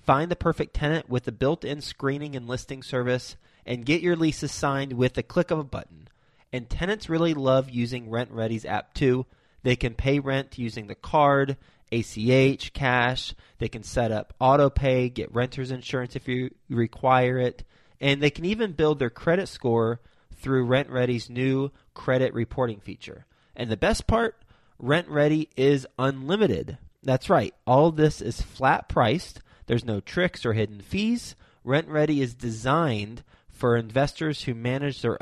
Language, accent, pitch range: English, American, 120-145 Hz